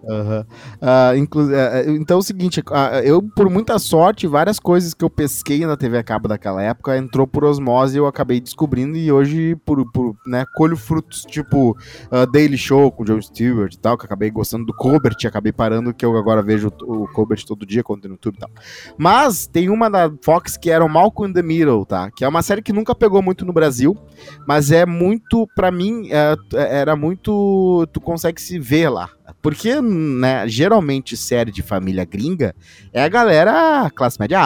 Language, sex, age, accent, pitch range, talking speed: Portuguese, male, 20-39, Brazilian, 115-165 Hz, 205 wpm